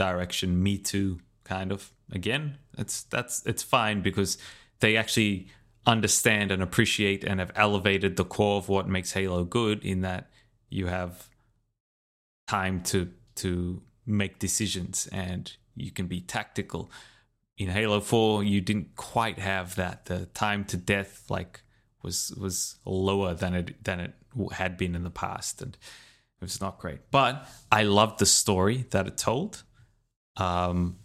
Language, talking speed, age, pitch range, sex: English, 155 wpm, 20-39, 90-110 Hz, male